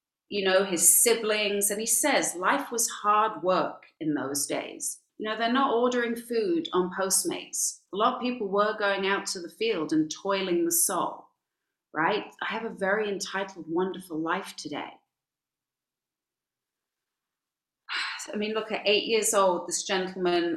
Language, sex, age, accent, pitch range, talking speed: English, female, 40-59, British, 175-230 Hz, 160 wpm